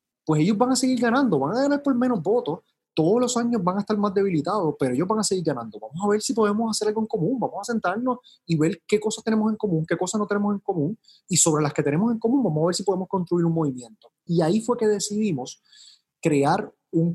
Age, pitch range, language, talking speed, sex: 30-49, 150-215 Hz, Spanish, 255 wpm, male